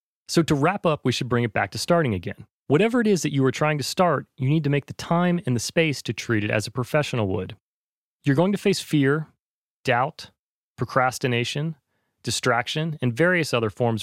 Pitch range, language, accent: 115-150 Hz, English, American